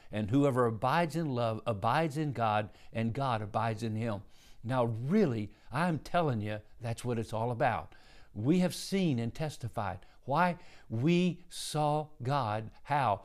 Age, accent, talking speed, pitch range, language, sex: 60-79, American, 150 wpm, 115-150 Hz, English, male